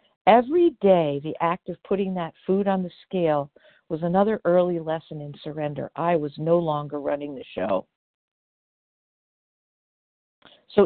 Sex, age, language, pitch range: female, 50-69, English, 160-200 Hz